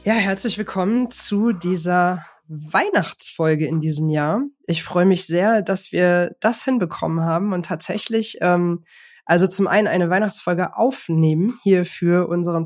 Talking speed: 140 wpm